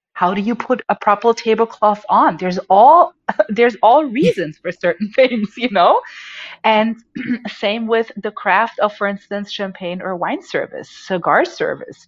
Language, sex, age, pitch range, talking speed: English, female, 40-59, 180-230 Hz, 160 wpm